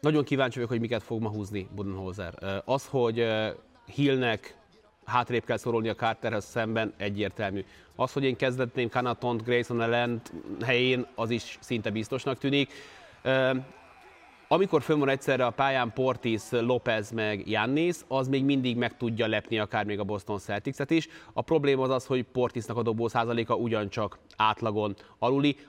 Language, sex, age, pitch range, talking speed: Hungarian, male, 30-49, 110-135 Hz, 155 wpm